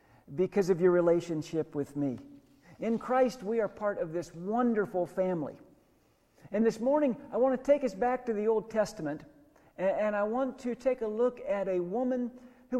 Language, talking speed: English, 185 wpm